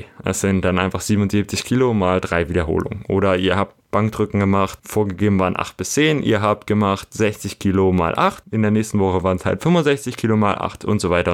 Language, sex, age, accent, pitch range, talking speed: German, male, 20-39, German, 95-110 Hz, 210 wpm